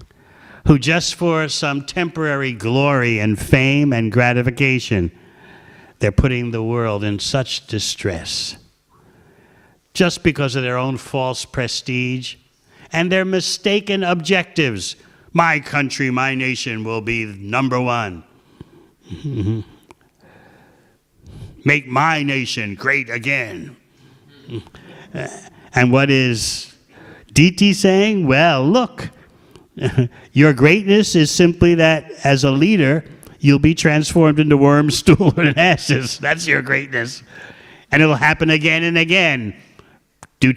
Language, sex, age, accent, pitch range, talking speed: English, male, 60-79, American, 120-160 Hz, 110 wpm